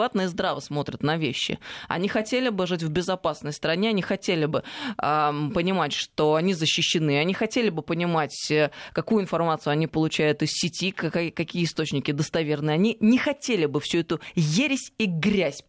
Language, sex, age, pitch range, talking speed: Russian, female, 20-39, 155-205 Hz, 165 wpm